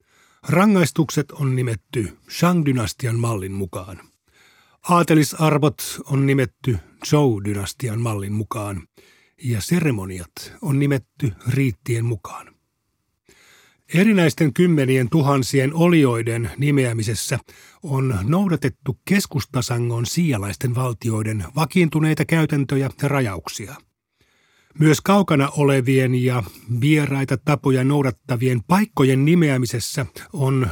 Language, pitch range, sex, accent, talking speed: Finnish, 115-150 Hz, male, native, 80 wpm